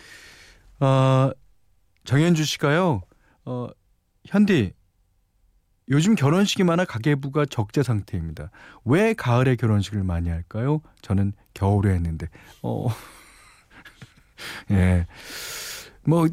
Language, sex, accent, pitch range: Korean, male, native, 100-155 Hz